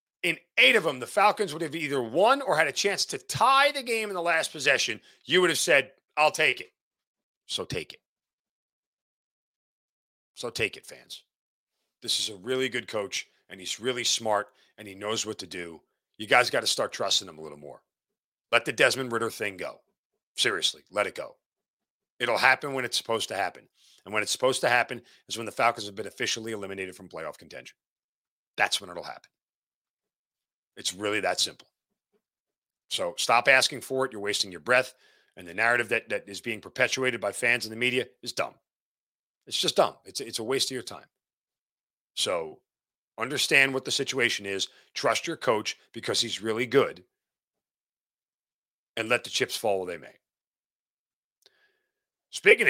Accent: American